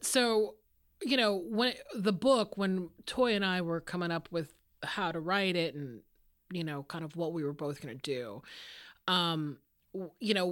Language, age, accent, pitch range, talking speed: English, 30-49, American, 155-205 Hz, 185 wpm